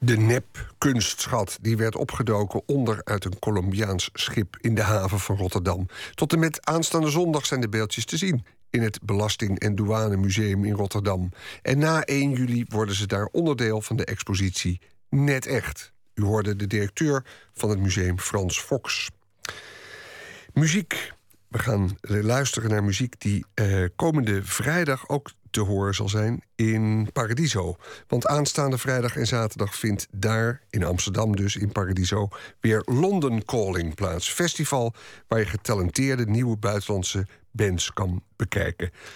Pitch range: 100-130 Hz